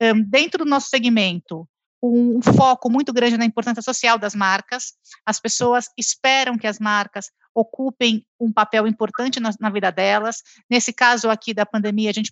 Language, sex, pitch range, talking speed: Portuguese, female, 215-275 Hz, 165 wpm